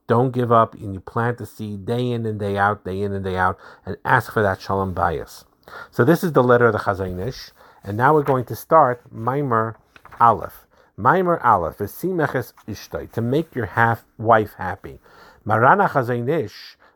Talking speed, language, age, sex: 180 wpm, English, 50-69, male